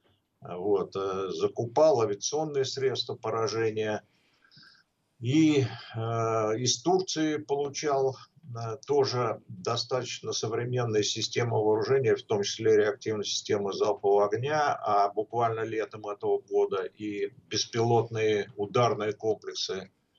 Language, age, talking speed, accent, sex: Russian, 50-69, 95 wpm, native, male